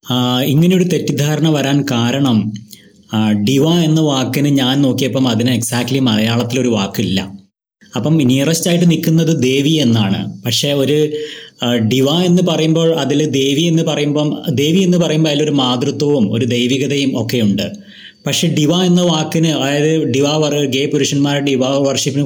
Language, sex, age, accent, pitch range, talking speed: Malayalam, male, 20-39, native, 120-150 Hz, 125 wpm